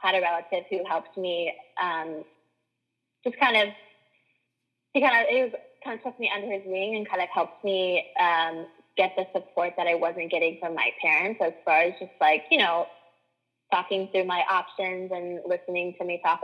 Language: English